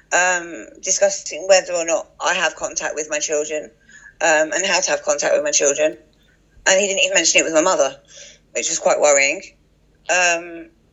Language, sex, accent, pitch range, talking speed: English, female, British, 160-205 Hz, 185 wpm